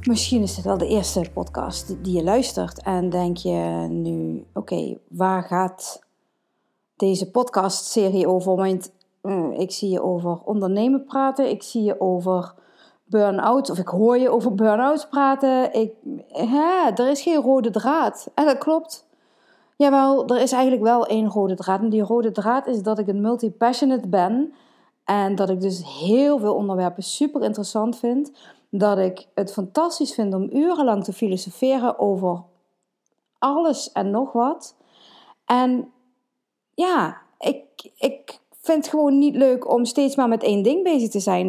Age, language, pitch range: 40-59, Dutch, 190-265 Hz